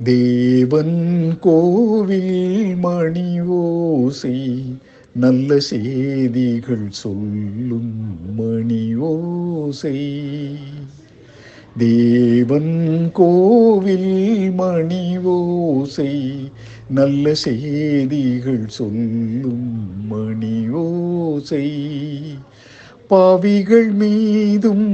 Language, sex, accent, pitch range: Tamil, male, native, 130-205 Hz